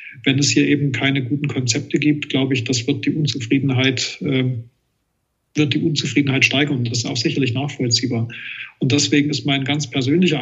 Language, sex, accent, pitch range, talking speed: German, male, German, 130-150 Hz, 180 wpm